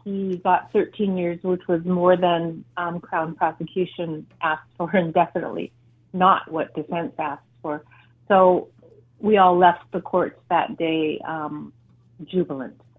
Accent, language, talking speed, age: American, English, 135 wpm, 40-59